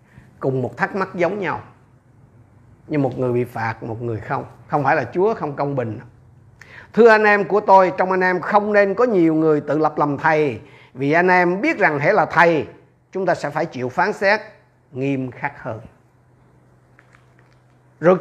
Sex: male